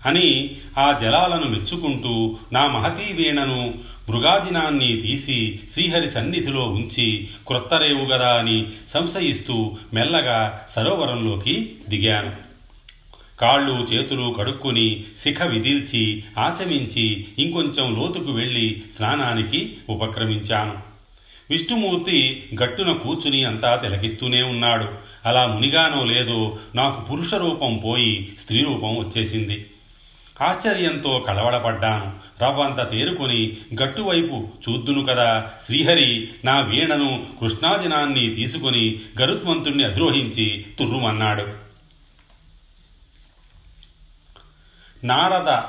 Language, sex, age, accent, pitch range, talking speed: Telugu, male, 40-59, native, 105-135 Hz, 75 wpm